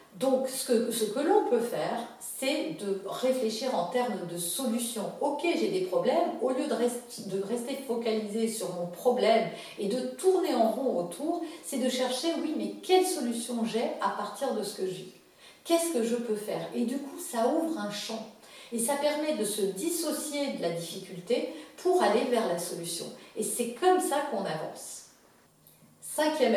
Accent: French